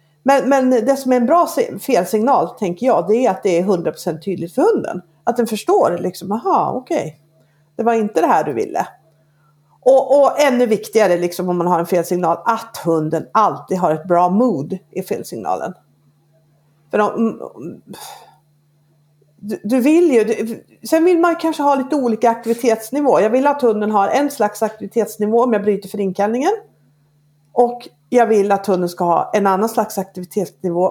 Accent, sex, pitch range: native, female, 170-235 Hz